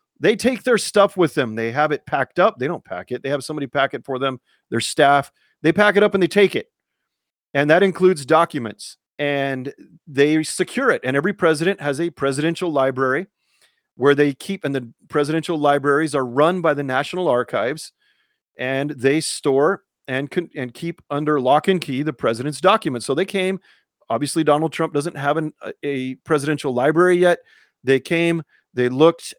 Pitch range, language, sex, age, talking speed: 140-175 Hz, English, male, 40-59, 185 wpm